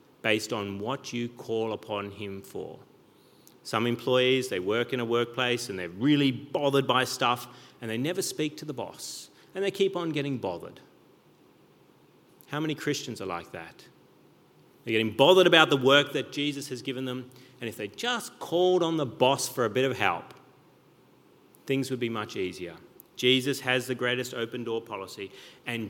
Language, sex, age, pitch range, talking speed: English, male, 30-49, 115-135 Hz, 180 wpm